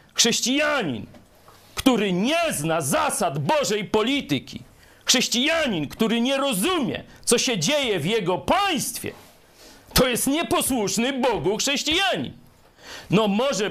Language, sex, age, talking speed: Polish, male, 50-69, 105 wpm